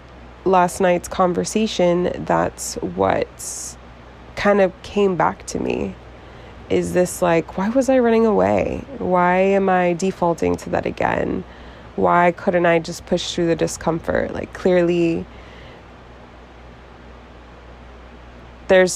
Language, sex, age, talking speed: English, female, 20-39, 115 wpm